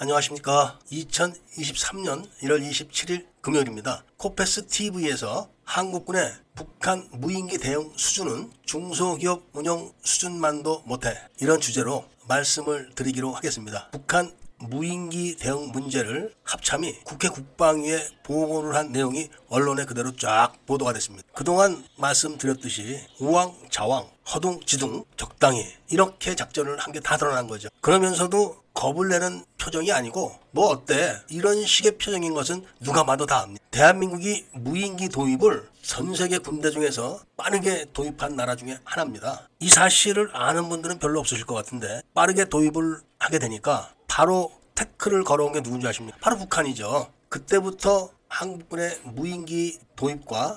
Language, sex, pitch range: Korean, male, 135-175 Hz